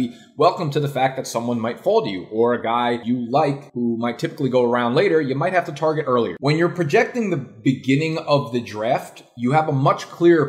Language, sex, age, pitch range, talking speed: English, male, 20-39, 120-150 Hz, 230 wpm